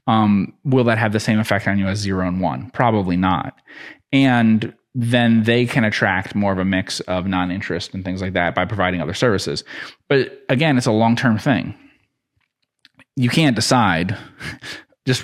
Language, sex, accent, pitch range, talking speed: English, male, American, 95-115 Hz, 175 wpm